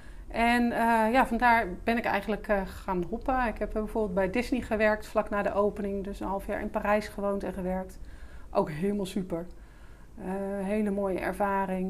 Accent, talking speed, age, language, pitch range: Dutch, 180 wpm, 40-59, Dutch, 195-220 Hz